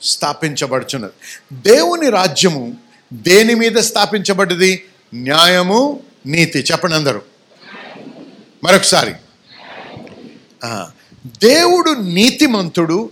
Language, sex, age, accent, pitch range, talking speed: Telugu, male, 50-69, native, 150-200 Hz, 60 wpm